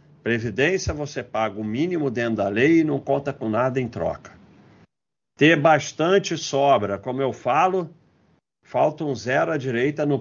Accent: Brazilian